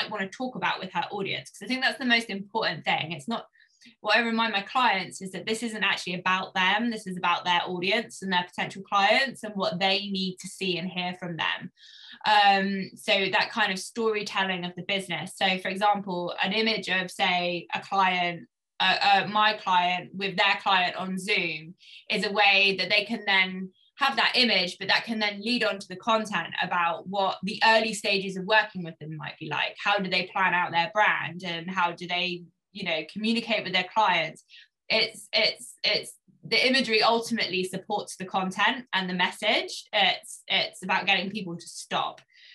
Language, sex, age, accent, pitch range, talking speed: English, female, 20-39, British, 180-215 Hz, 200 wpm